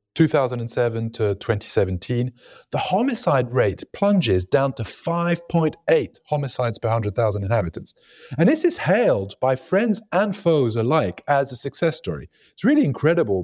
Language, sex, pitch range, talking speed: English, male, 115-160 Hz, 135 wpm